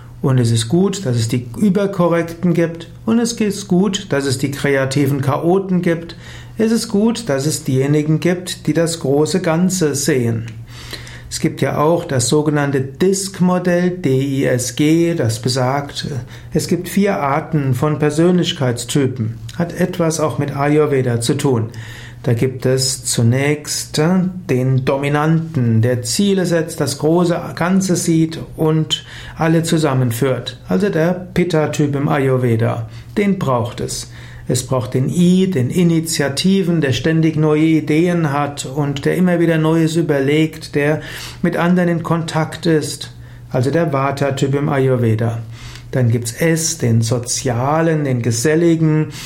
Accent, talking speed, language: German, 140 wpm, German